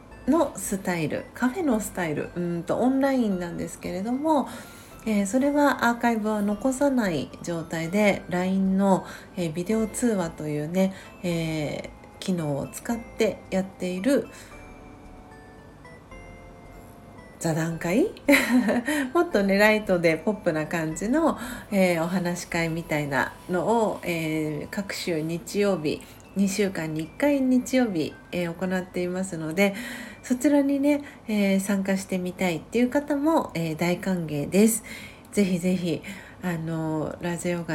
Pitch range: 170-230 Hz